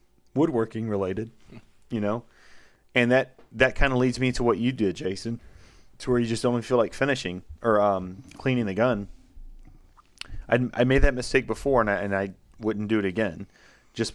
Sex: male